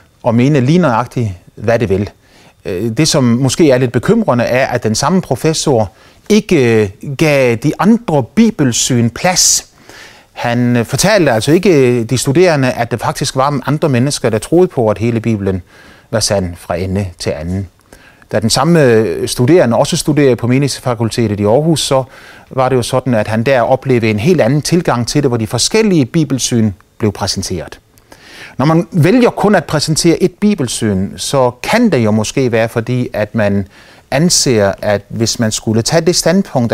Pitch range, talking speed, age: 110-150 Hz, 170 wpm, 30-49